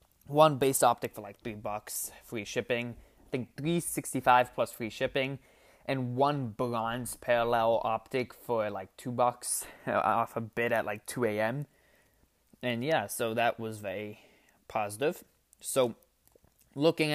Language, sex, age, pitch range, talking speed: English, male, 20-39, 115-150 Hz, 145 wpm